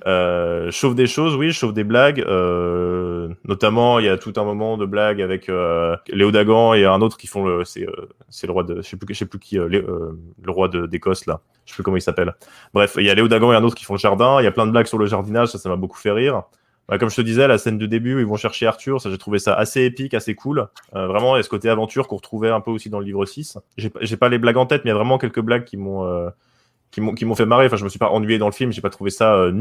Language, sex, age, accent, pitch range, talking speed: French, male, 20-39, French, 95-115 Hz, 320 wpm